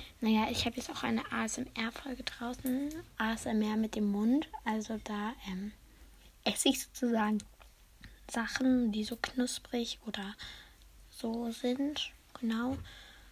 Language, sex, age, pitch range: German, female, 20-39, 220-270 Hz